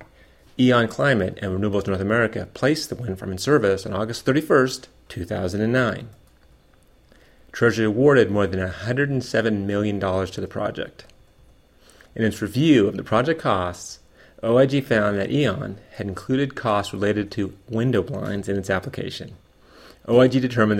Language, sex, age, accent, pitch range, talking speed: English, male, 30-49, American, 95-115 Hz, 140 wpm